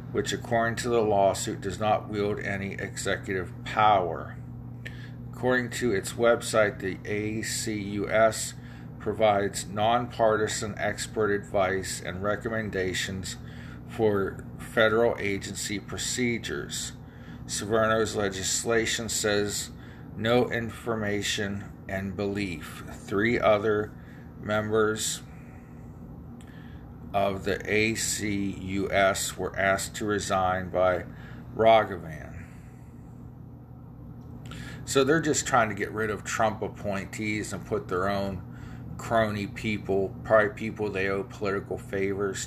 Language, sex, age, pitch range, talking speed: English, male, 50-69, 100-115 Hz, 95 wpm